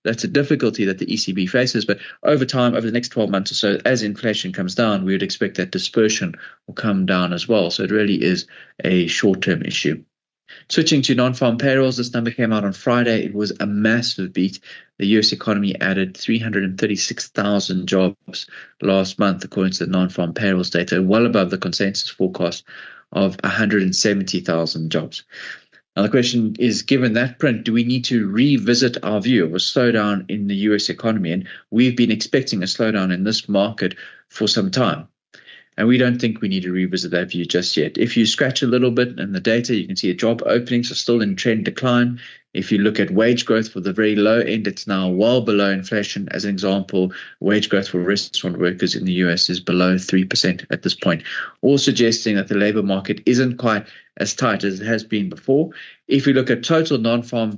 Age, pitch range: 30-49, 95-120 Hz